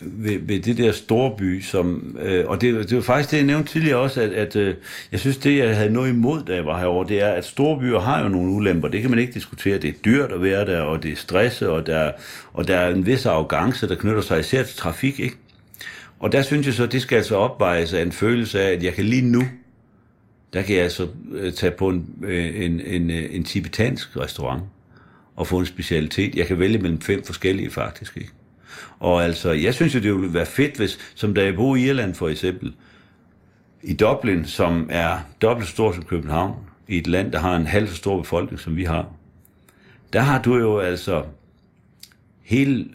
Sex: male